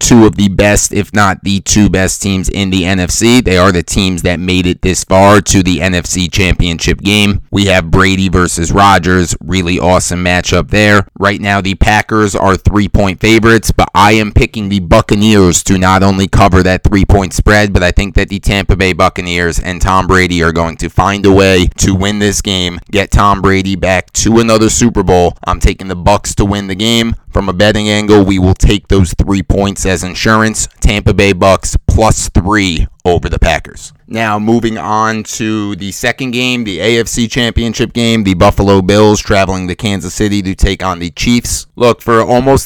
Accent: American